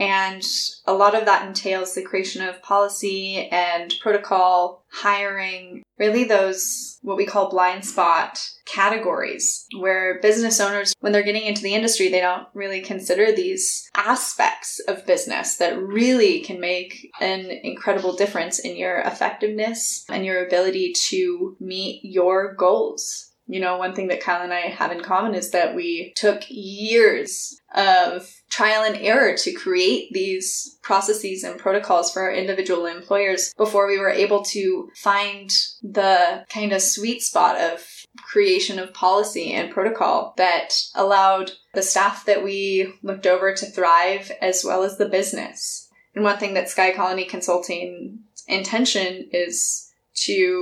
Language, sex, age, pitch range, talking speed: English, female, 20-39, 185-220 Hz, 150 wpm